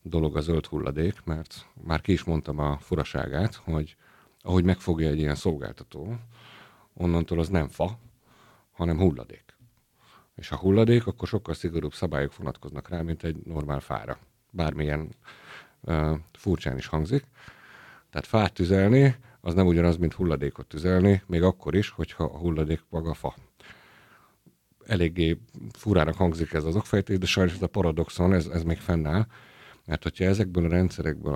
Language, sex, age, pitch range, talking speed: Hungarian, male, 50-69, 75-95 Hz, 150 wpm